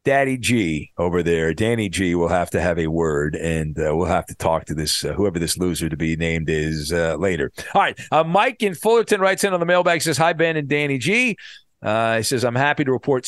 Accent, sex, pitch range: American, male, 110-165 Hz